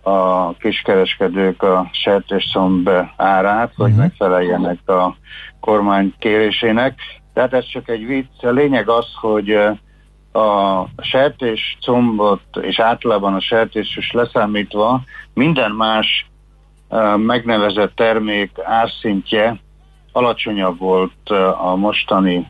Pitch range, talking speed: 95-120 Hz, 100 wpm